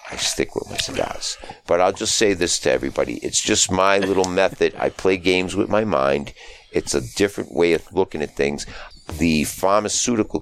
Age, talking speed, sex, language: 50-69, 190 wpm, male, English